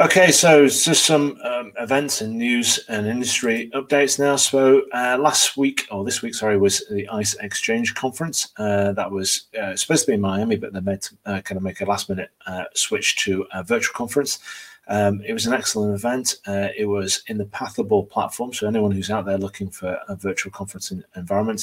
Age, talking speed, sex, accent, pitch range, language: 30-49, 200 wpm, male, British, 100-125 Hz, English